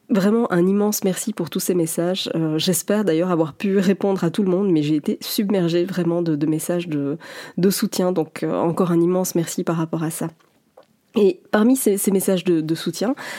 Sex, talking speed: female, 210 wpm